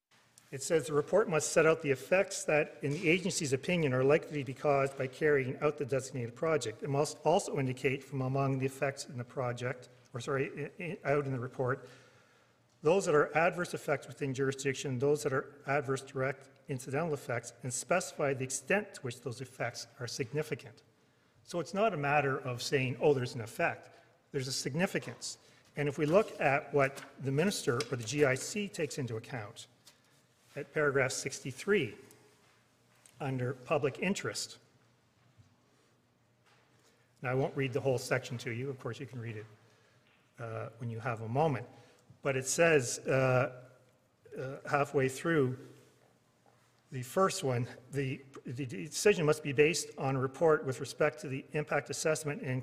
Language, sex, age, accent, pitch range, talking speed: English, male, 40-59, Canadian, 125-150 Hz, 170 wpm